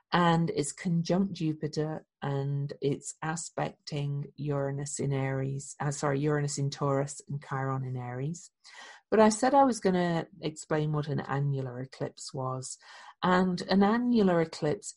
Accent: British